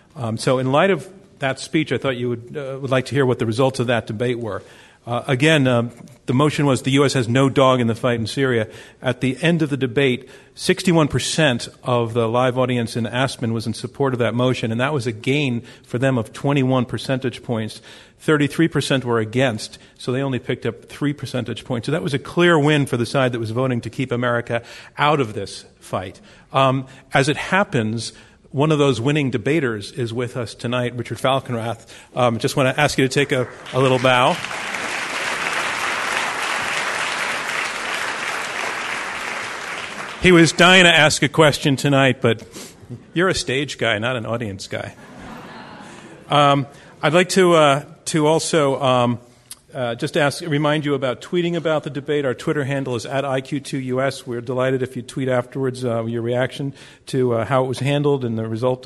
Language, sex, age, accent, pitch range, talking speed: English, male, 40-59, American, 120-145 Hz, 190 wpm